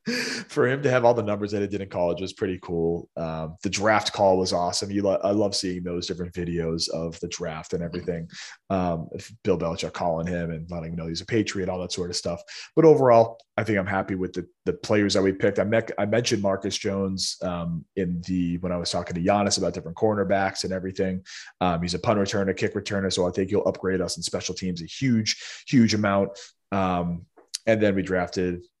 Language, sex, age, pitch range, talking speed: English, male, 20-39, 85-105 Hz, 230 wpm